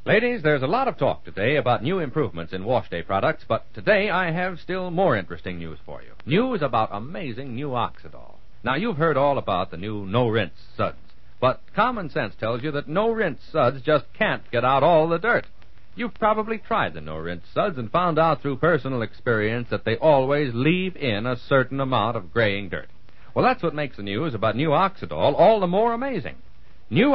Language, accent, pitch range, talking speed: English, American, 110-180 Hz, 200 wpm